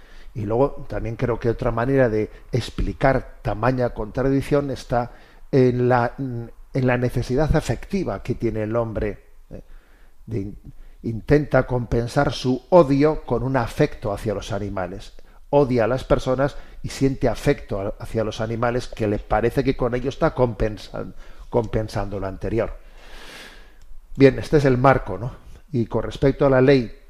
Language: Spanish